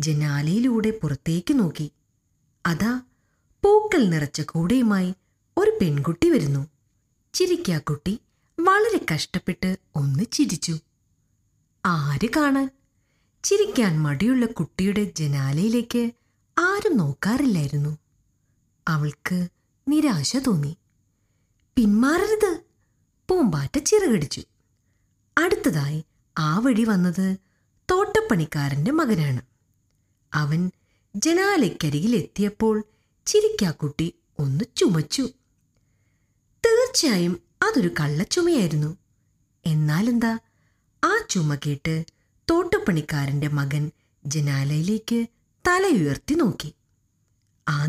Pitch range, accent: 150-245 Hz, native